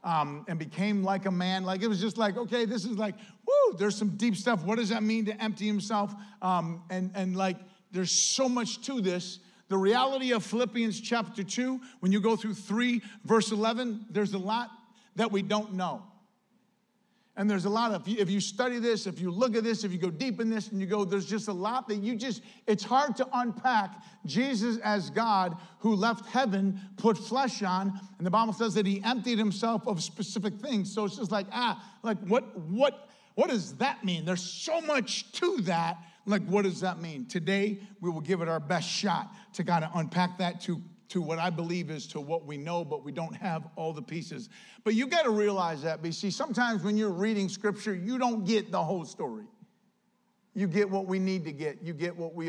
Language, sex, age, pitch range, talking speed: English, male, 50-69, 180-225 Hz, 220 wpm